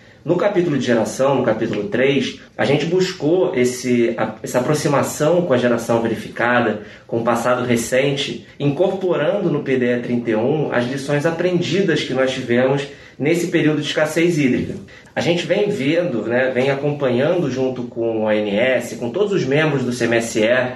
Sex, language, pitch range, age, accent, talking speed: male, Portuguese, 125-180 Hz, 20-39, Brazilian, 150 wpm